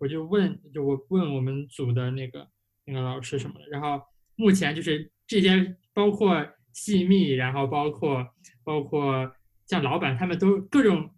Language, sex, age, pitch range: Chinese, male, 20-39, 140-195 Hz